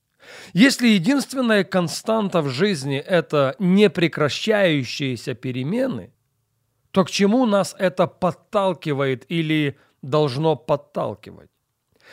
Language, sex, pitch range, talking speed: Russian, male, 130-185 Hz, 90 wpm